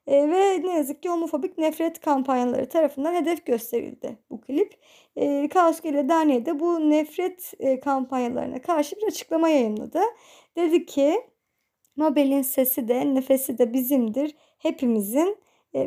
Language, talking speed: Turkish, 135 wpm